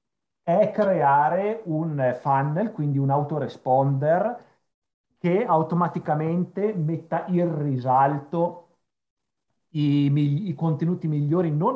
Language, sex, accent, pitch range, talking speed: Italian, male, native, 130-160 Hz, 85 wpm